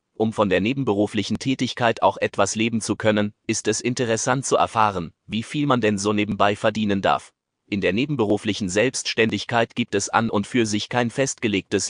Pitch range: 105-115 Hz